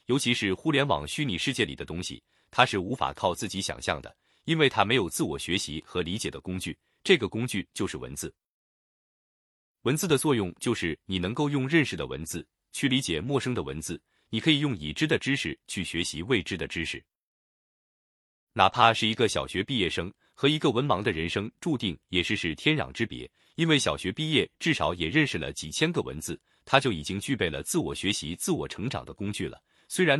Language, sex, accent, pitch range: Chinese, male, native, 85-135 Hz